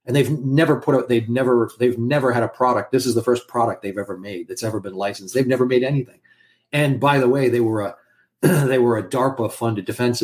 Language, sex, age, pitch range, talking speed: English, male, 40-59, 115-145 Hz, 240 wpm